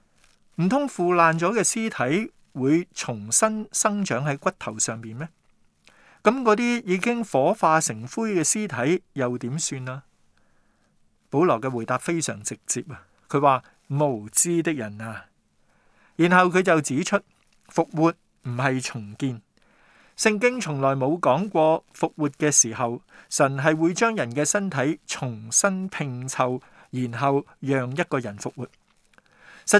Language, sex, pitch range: Chinese, male, 125-175 Hz